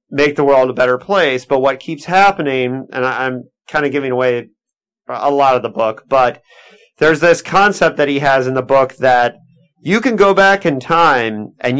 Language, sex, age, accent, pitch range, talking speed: English, male, 30-49, American, 125-155 Hz, 200 wpm